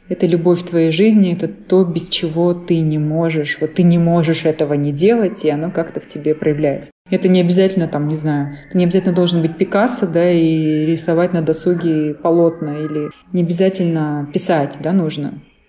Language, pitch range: Russian, 160-185 Hz